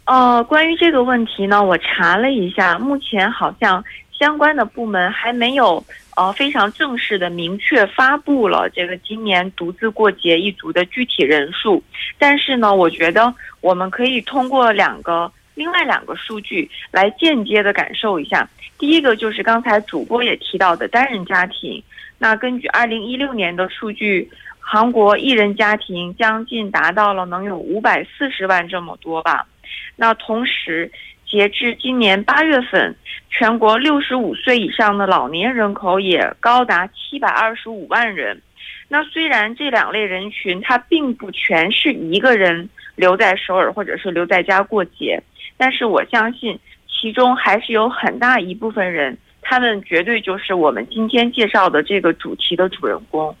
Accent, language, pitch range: Chinese, Korean, 185-250 Hz